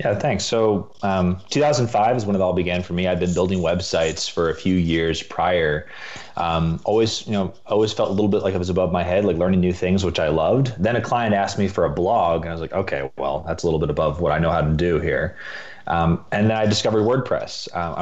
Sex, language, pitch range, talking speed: male, English, 85-105 Hz, 255 wpm